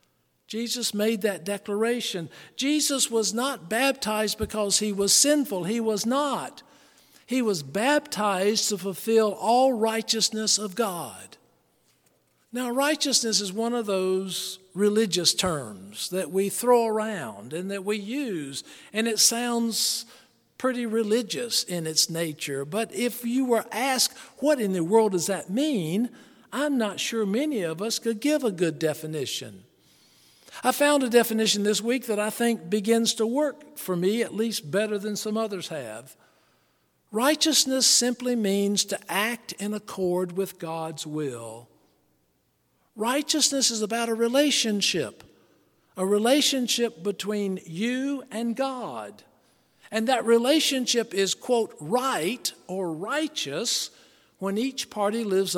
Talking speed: 135 wpm